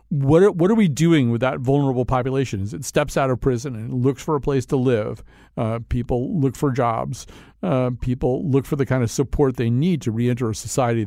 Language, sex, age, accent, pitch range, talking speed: English, male, 50-69, American, 115-150 Hz, 215 wpm